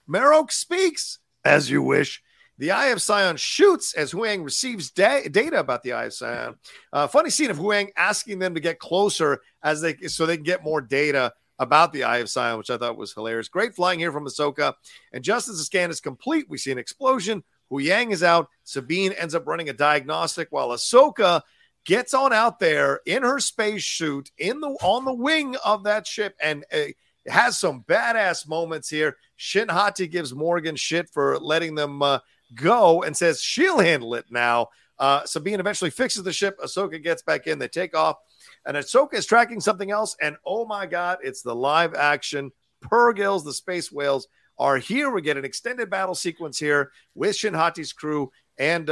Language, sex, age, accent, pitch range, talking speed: English, male, 40-59, American, 150-210 Hz, 195 wpm